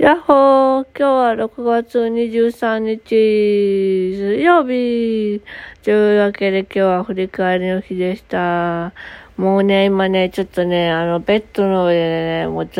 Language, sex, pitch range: Japanese, female, 165-210 Hz